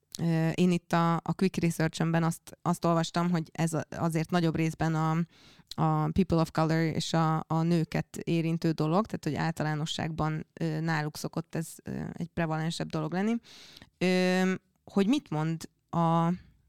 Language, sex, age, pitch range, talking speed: Hungarian, female, 20-39, 160-185 Hz, 140 wpm